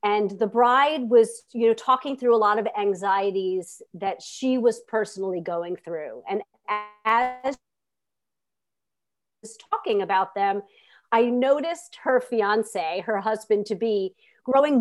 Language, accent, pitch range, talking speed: English, American, 205-260 Hz, 130 wpm